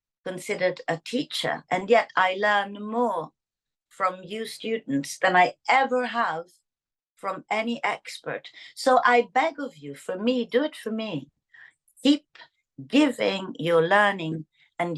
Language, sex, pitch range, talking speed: Turkish, female, 175-250 Hz, 135 wpm